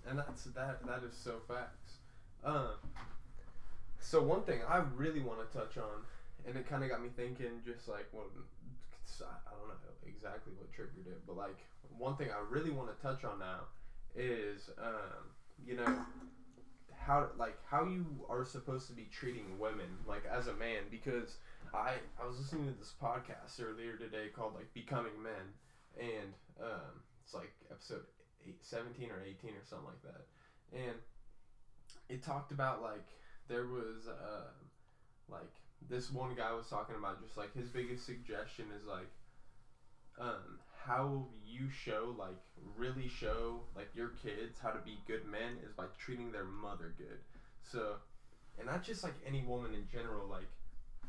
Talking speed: 170 wpm